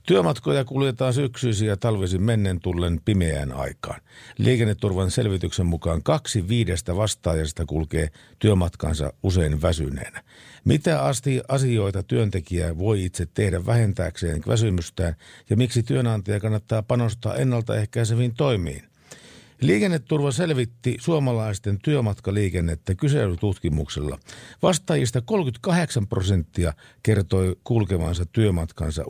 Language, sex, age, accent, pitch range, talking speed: Finnish, male, 50-69, native, 90-120 Hz, 95 wpm